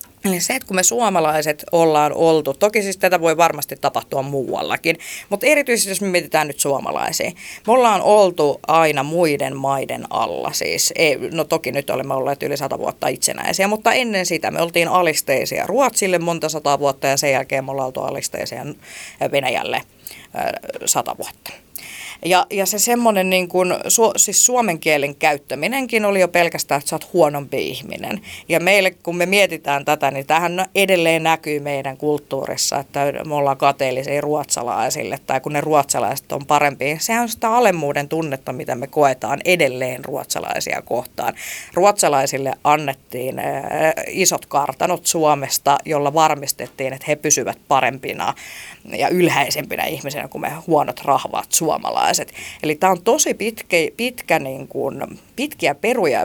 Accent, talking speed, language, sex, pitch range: native, 150 wpm, Finnish, female, 140-195 Hz